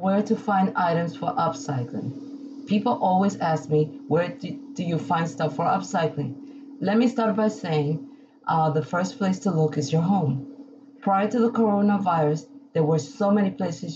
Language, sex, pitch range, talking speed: English, female, 150-210 Hz, 175 wpm